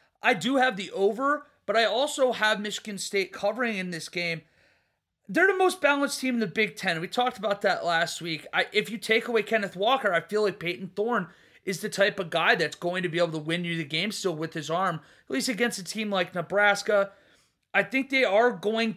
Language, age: English, 30-49